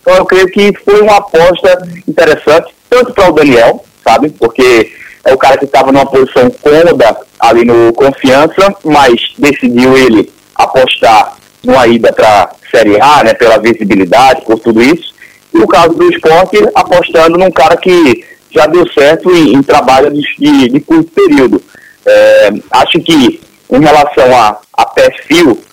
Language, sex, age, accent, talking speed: Portuguese, male, 20-39, Brazilian, 160 wpm